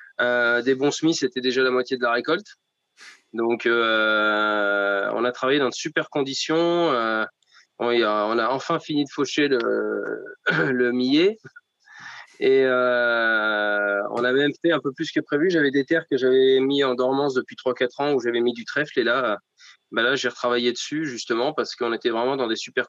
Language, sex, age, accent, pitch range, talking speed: French, male, 20-39, French, 115-135 Hz, 195 wpm